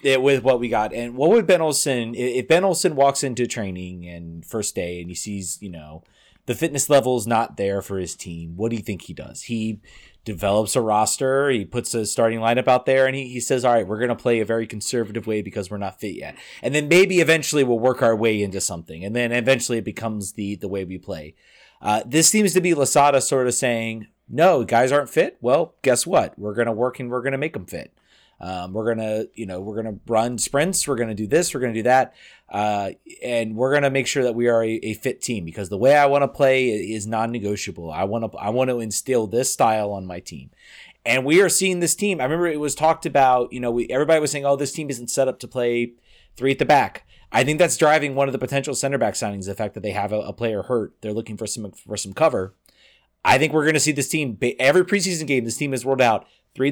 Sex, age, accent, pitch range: male, 30-49, American, 105-135 Hz